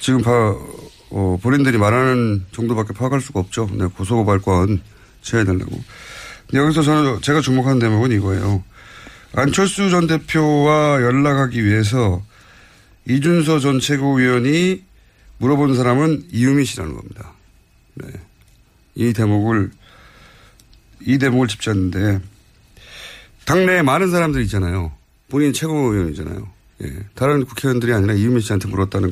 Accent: native